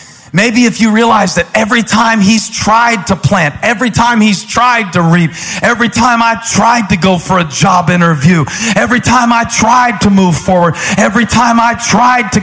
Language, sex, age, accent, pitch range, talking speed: English, male, 40-59, American, 145-220 Hz, 190 wpm